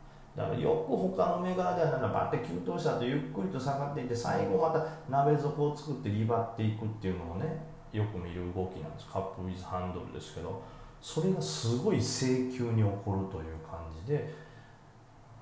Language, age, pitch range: Japanese, 40-59, 100-150 Hz